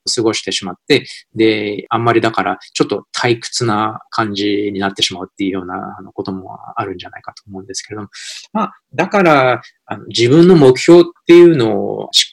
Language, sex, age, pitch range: Japanese, male, 20-39, 105-160 Hz